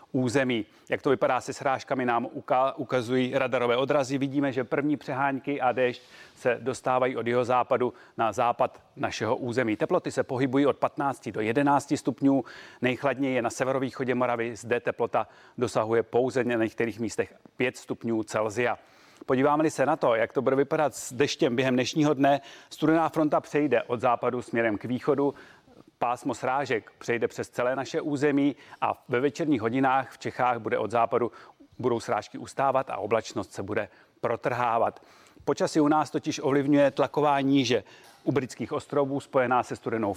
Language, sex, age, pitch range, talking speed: Czech, male, 30-49, 120-140 Hz, 160 wpm